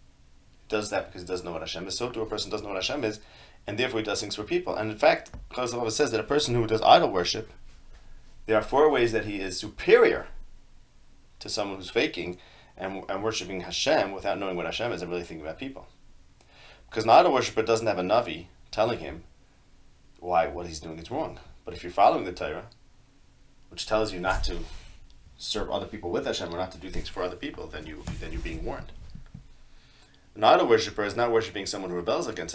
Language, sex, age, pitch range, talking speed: English, male, 30-49, 85-110 Hz, 220 wpm